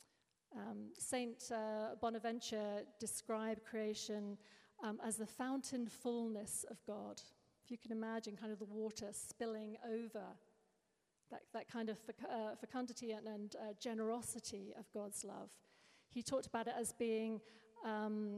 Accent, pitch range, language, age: British, 215-250 Hz, English, 40-59